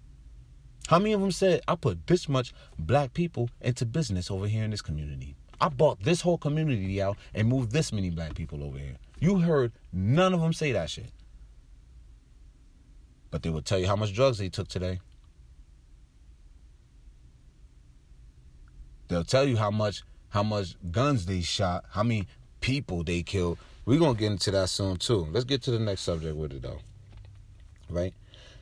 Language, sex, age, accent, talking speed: English, male, 30-49, American, 175 wpm